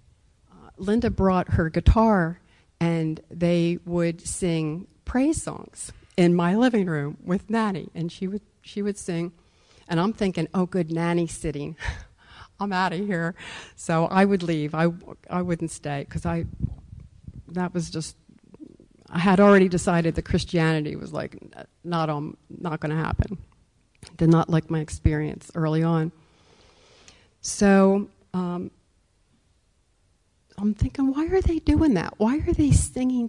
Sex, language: female, English